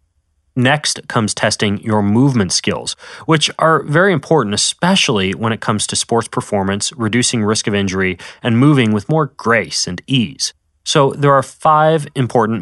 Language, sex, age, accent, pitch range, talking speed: English, male, 30-49, American, 100-140 Hz, 155 wpm